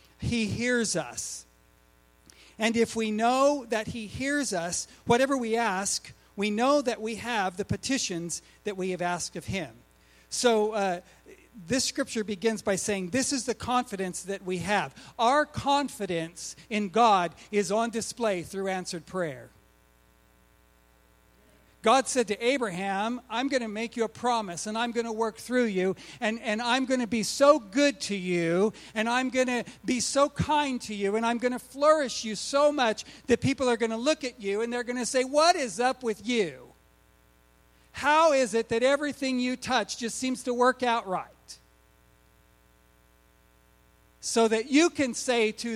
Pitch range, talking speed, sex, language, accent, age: 160-245 Hz, 175 wpm, male, English, American, 50-69